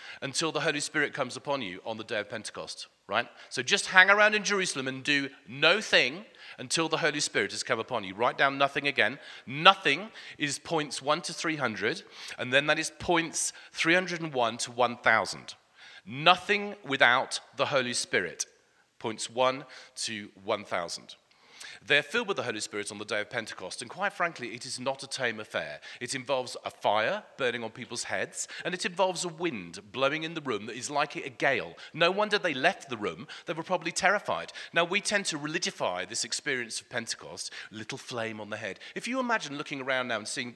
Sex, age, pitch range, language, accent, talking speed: male, 40-59, 130-185 Hz, English, British, 195 wpm